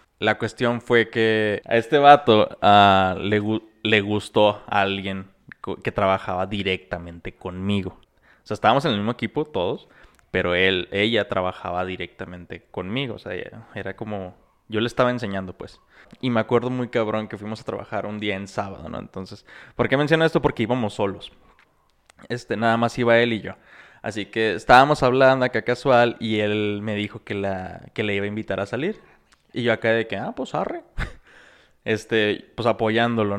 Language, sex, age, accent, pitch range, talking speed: Spanish, male, 20-39, Mexican, 100-120 Hz, 185 wpm